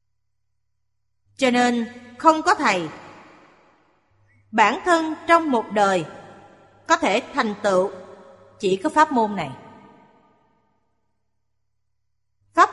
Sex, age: female, 30-49